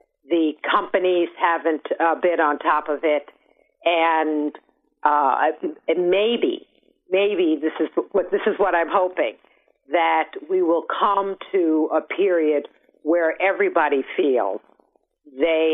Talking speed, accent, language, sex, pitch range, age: 120 wpm, American, English, female, 150-205 Hz, 50-69